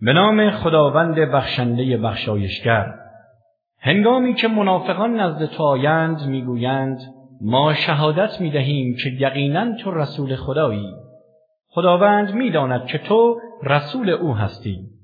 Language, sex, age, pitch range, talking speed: English, male, 50-69, 115-175 Hz, 110 wpm